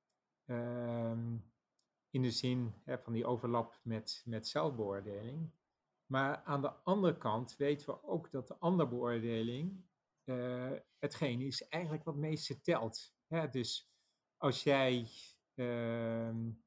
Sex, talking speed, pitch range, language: male, 125 wpm, 115-140 Hz, Dutch